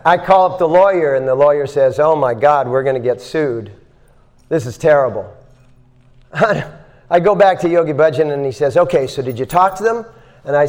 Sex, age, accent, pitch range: male, 40-59, American, 125-180 Hz